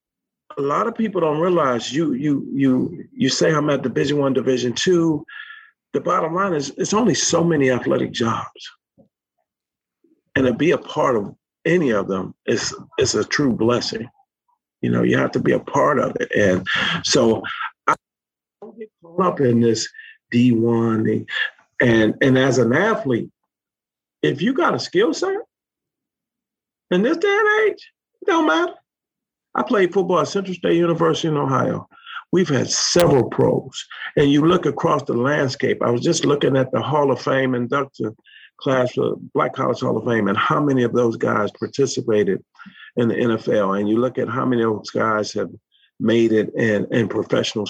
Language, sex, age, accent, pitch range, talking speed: English, male, 50-69, American, 115-185 Hz, 180 wpm